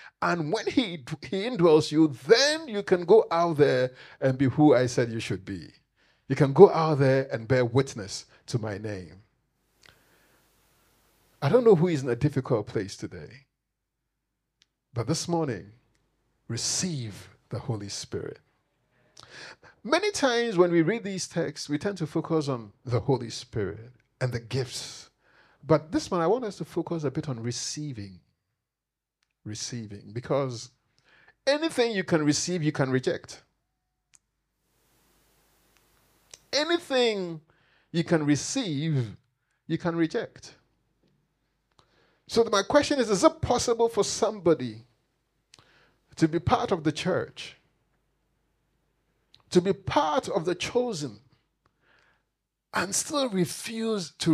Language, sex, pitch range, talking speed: English, male, 125-185 Hz, 130 wpm